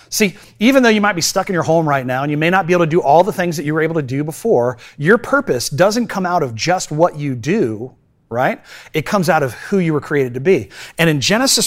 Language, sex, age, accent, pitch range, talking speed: English, male, 30-49, American, 135-180 Hz, 280 wpm